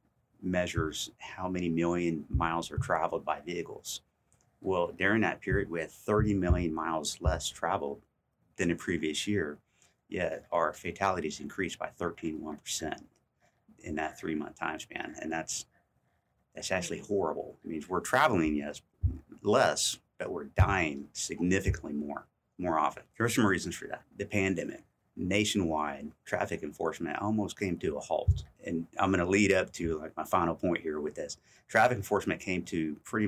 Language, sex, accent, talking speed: English, male, American, 165 wpm